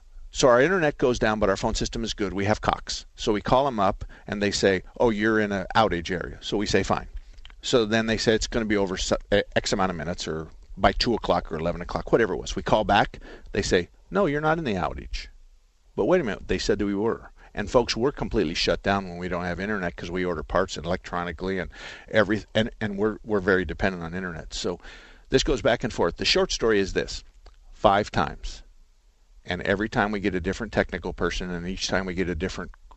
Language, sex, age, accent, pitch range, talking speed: English, male, 50-69, American, 90-110 Hz, 235 wpm